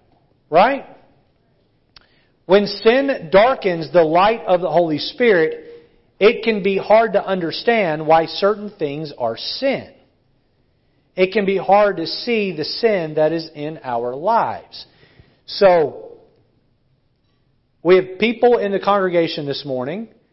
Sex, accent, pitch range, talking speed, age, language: male, American, 145-195 Hz, 125 wpm, 40-59, English